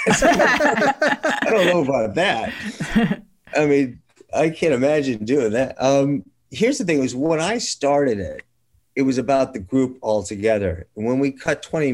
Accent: American